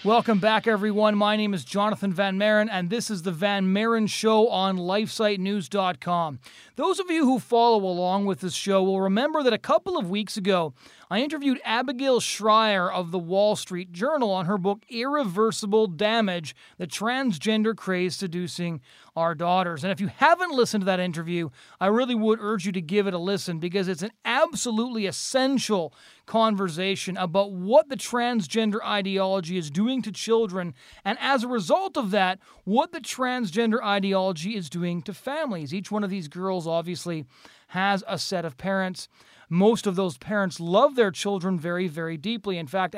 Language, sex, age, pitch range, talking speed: English, male, 40-59, 180-220 Hz, 175 wpm